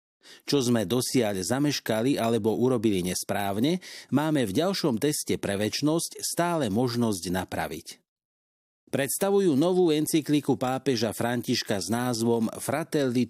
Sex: male